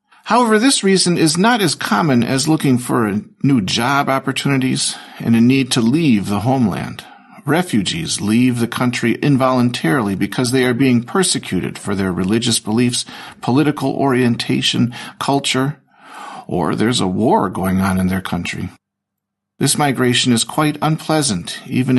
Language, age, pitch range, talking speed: Slovak, 50-69, 110-145 Hz, 140 wpm